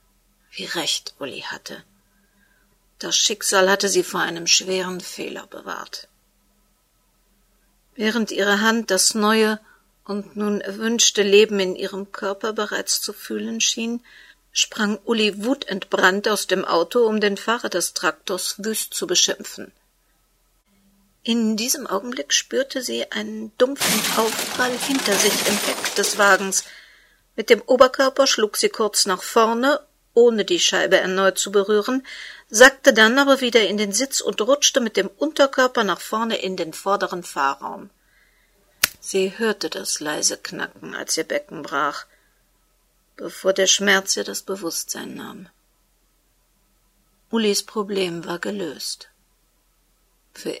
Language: German